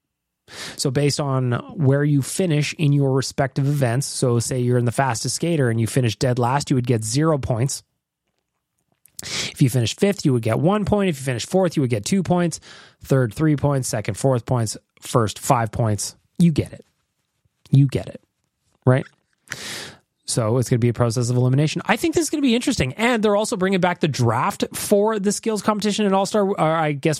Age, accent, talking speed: 20-39, American, 205 wpm